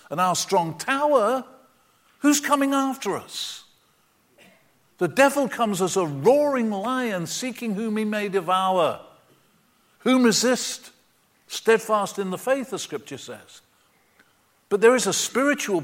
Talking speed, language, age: 130 wpm, English, 50-69